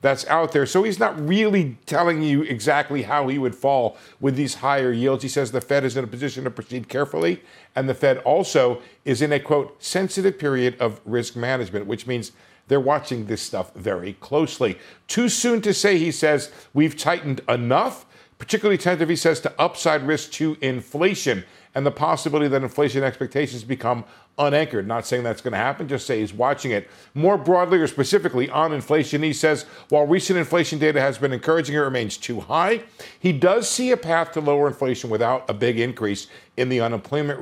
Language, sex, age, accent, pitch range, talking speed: English, male, 50-69, American, 115-155 Hz, 195 wpm